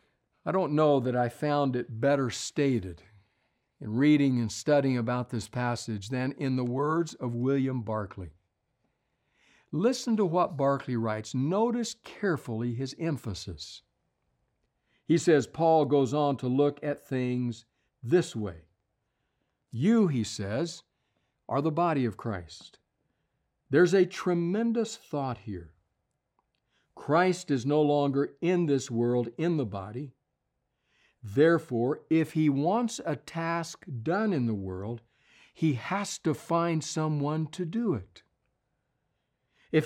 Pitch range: 120-160 Hz